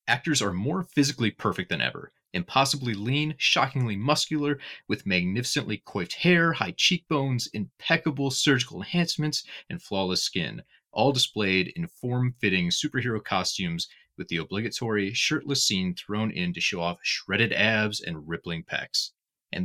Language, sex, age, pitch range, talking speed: English, male, 30-49, 105-155 Hz, 135 wpm